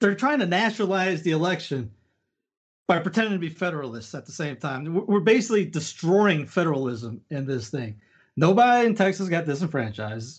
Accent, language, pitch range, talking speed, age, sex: American, English, 160-205 Hz, 155 wpm, 30-49, male